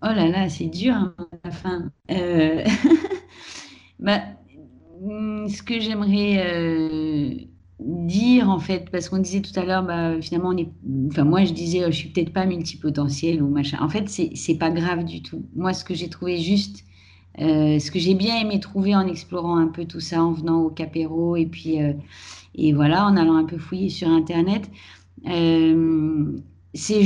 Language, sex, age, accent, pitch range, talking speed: French, female, 40-59, French, 155-200 Hz, 190 wpm